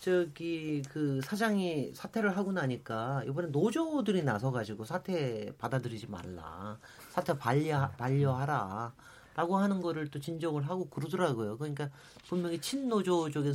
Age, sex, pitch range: 40-59, male, 155-230 Hz